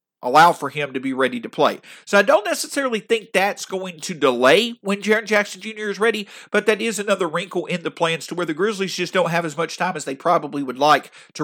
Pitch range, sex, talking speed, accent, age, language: 150-215 Hz, male, 245 wpm, American, 40-59, English